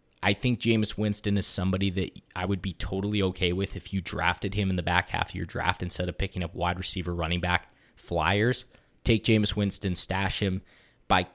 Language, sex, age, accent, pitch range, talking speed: English, male, 20-39, American, 95-110 Hz, 205 wpm